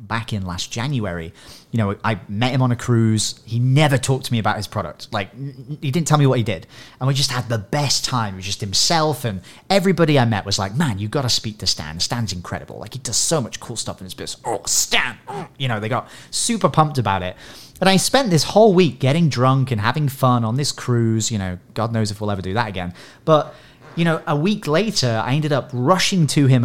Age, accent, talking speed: 30-49, British, 250 wpm